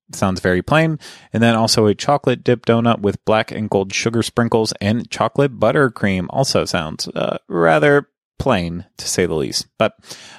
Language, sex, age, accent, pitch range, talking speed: English, male, 20-39, American, 100-125 Hz, 175 wpm